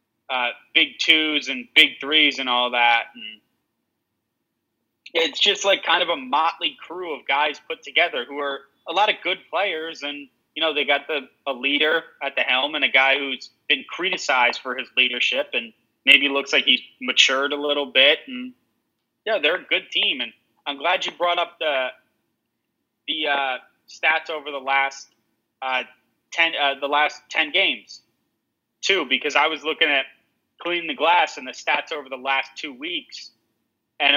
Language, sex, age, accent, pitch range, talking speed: English, male, 20-39, American, 135-175 Hz, 180 wpm